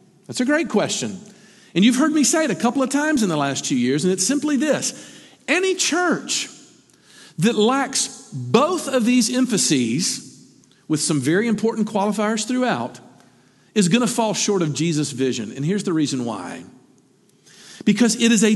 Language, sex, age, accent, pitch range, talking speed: English, male, 50-69, American, 190-260 Hz, 170 wpm